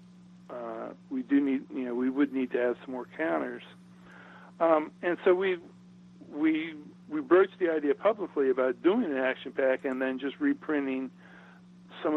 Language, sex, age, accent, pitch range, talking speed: English, male, 60-79, American, 125-180 Hz, 170 wpm